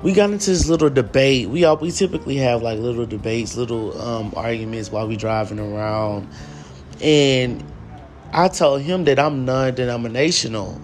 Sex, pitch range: male, 110-140 Hz